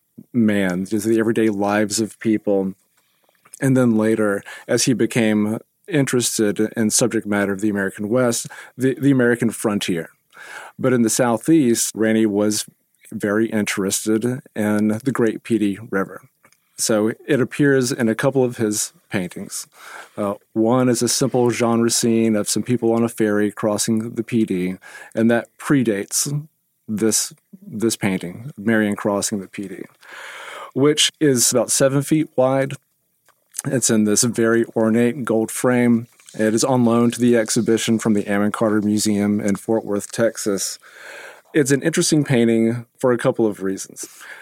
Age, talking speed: 40-59, 150 wpm